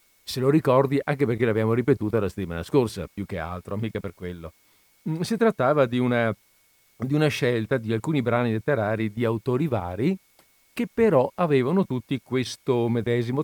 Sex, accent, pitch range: male, native, 110-145 Hz